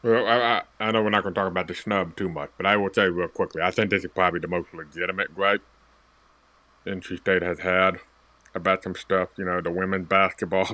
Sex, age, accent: male, 30-49, American